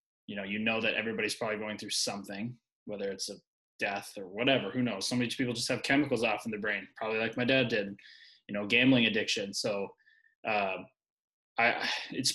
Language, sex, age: English, male, 20-39